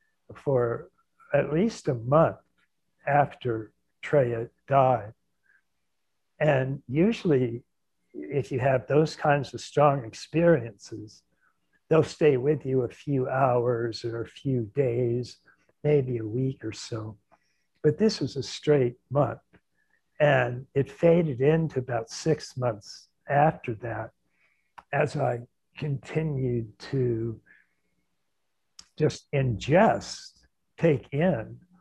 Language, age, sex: English, 60-79, male